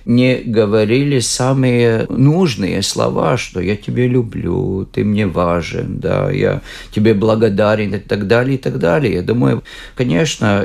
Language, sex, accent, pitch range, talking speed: Russian, male, native, 100-130 Hz, 140 wpm